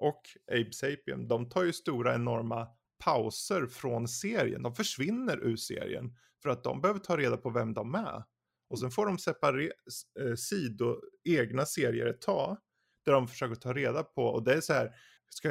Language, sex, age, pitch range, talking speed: Swedish, male, 20-39, 120-160 Hz, 185 wpm